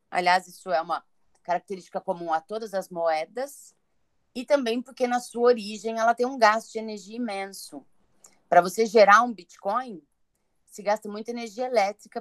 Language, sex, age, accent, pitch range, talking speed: Portuguese, female, 30-49, Brazilian, 190-245 Hz, 160 wpm